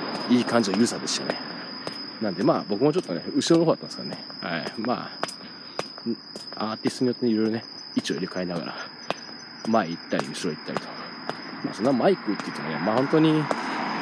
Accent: native